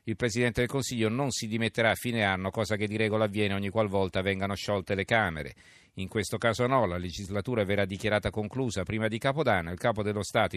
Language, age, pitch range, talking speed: Italian, 50-69, 100-115 Hz, 220 wpm